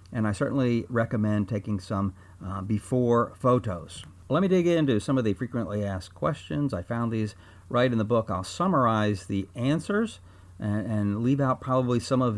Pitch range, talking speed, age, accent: 100-140 Hz, 180 wpm, 50-69, American